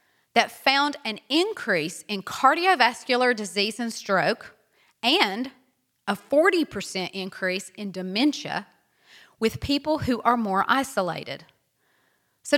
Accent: American